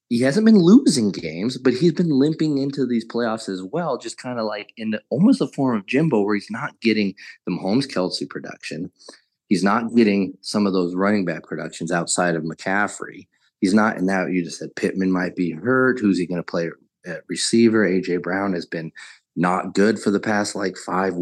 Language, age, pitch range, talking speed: English, 30-49, 90-115 Hz, 205 wpm